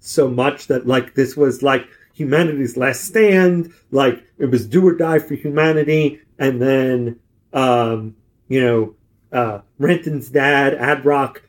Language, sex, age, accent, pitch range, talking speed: English, male, 40-59, American, 120-150 Hz, 140 wpm